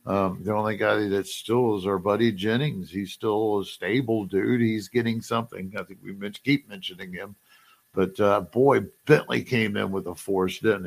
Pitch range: 95-120 Hz